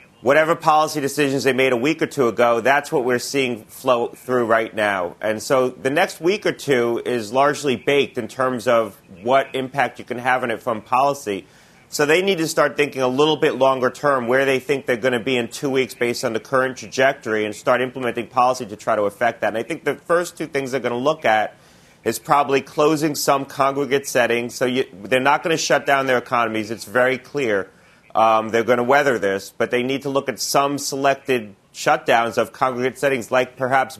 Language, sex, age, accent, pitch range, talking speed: English, male, 30-49, American, 120-140 Hz, 220 wpm